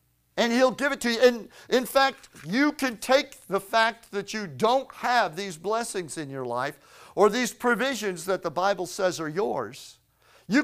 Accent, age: American, 50-69